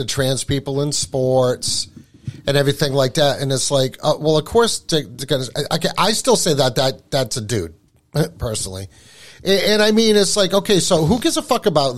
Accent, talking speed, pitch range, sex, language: American, 190 wpm, 130-170 Hz, male, English